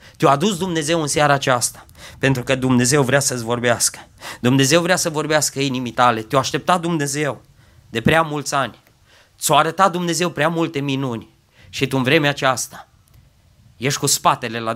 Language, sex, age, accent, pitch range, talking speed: Romanian, male, 20-39, native, 115-155 Hz, 170 wpm